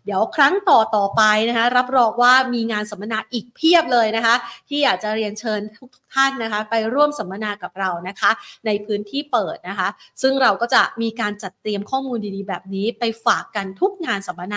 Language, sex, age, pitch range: Thai, female, 30-49, 210-255 Hz